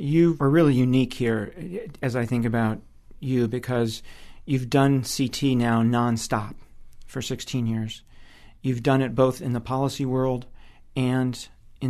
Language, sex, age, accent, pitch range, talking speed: English, male, 40-59, American, 120-135 Hz, 145 wpm